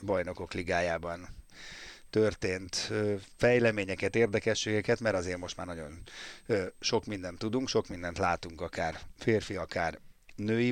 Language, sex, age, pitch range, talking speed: Hungarian, male, 30-49, 90-115 Hz, 110 wpm